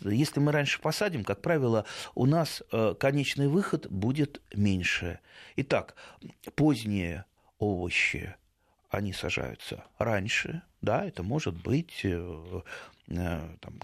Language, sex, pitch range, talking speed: Russian, male, 95-145 Hz, 100 wpm